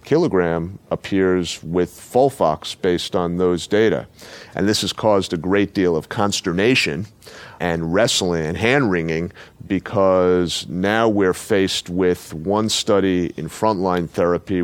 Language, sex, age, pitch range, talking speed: English, male, 40-59, 85-100 Hz, 130 wpm